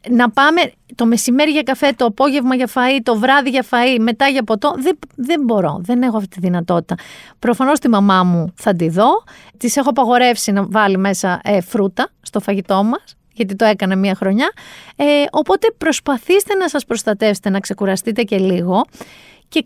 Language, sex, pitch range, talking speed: Greek, female, 195-265 Hz, 180 wpm